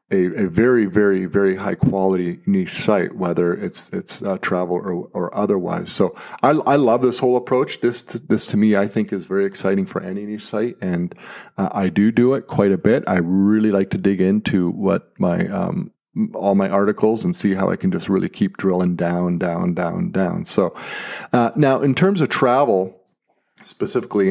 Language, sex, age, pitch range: English, male, 40-59, 95-110 Hz